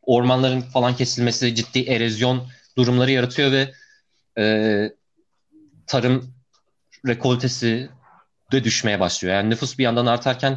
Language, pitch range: Turkish, 105-140 Hz